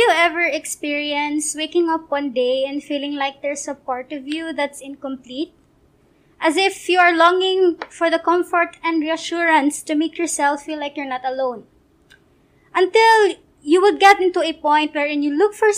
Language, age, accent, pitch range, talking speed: English, 20-39, Filipino, 285-365 Hz, 180 wpm